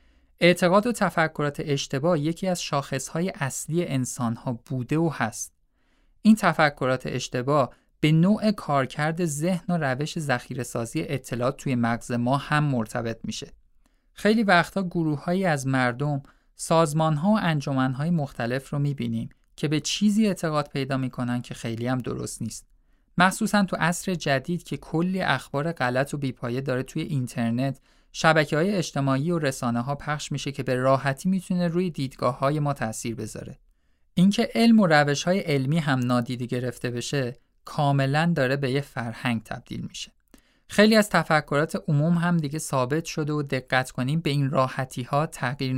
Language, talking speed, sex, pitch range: Persian, 145 wpm, male, 125-170 Hz